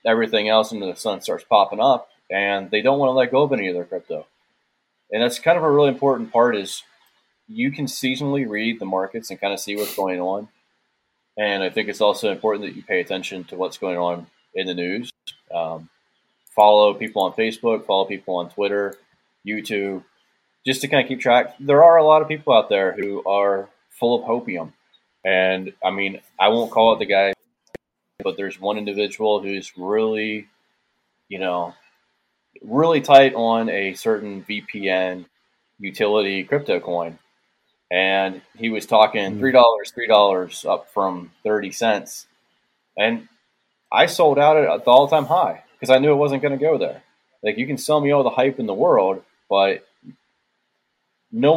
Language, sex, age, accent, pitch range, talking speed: English, male, 20-39, American, 95-130 Hz, 180 wpm